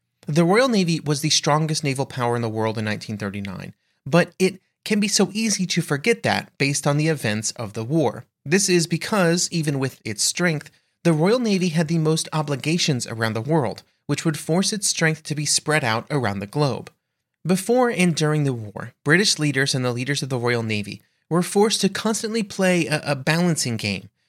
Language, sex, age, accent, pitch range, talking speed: English, male, 30-49, American, 120-175 Hz, 200 wpm